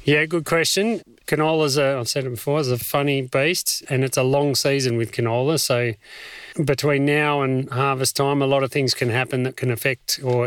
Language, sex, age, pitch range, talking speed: English, male, 30-49, 115-140 Hz, 205 wpm